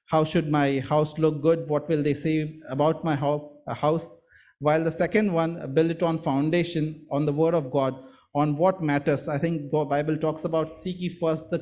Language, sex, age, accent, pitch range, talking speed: English, male, 30-49, Indian, 140-170 Hz, 195 wpm